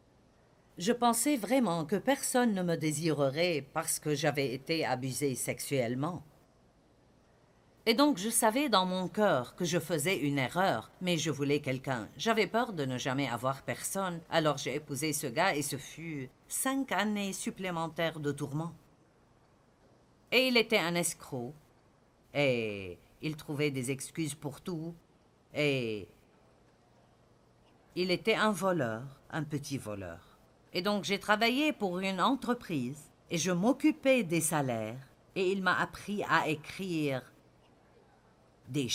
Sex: female